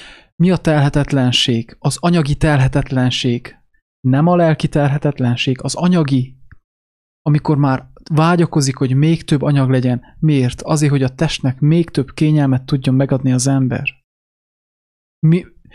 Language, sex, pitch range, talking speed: English, male, 130-160 Hz, 125 wpm